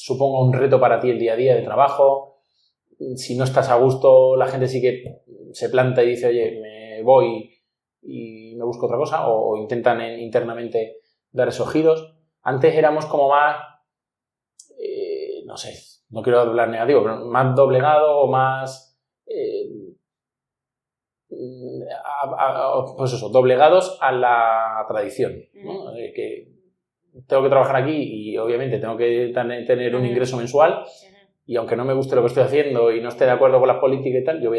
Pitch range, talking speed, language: 120-160 Hz, 175 wpm, French